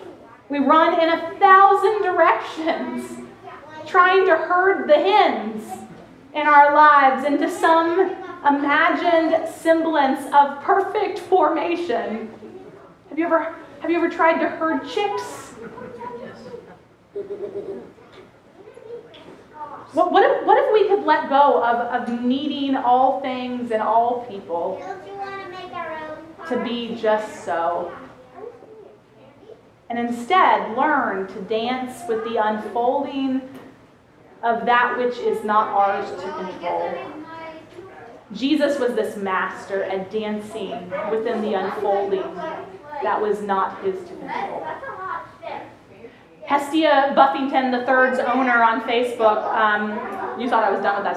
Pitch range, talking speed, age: 235-335 Hz, 110 wpm, 30-49